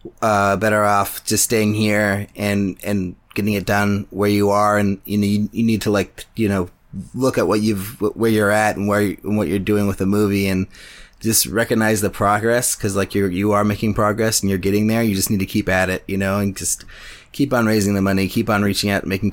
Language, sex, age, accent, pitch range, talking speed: English, male, 30-49, American, 95-110 Hz, 240 wpm